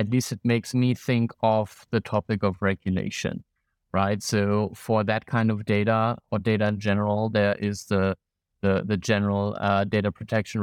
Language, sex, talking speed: English, male, 170 wpm